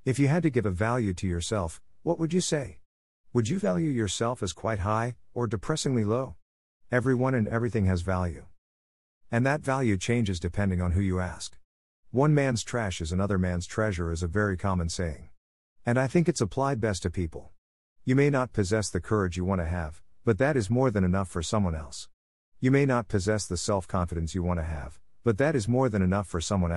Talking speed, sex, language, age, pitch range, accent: 210 wpm, male, English, 50-69, 85-120 Hz, American